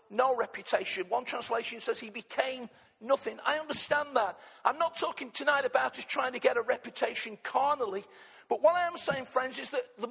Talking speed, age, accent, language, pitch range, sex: 190 wpm, 50-69, British, English, 220-295 Hz, male